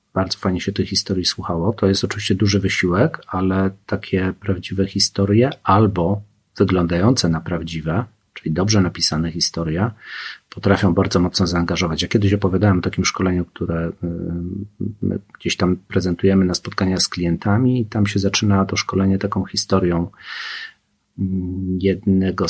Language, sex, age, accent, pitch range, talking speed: Polish, male, 40-59, native, 95-105 Hz, 135 wpm